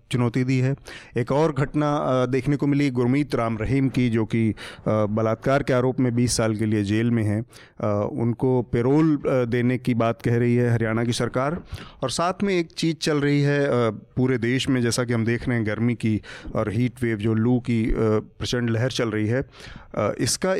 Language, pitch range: Hindi, 115-130 Hz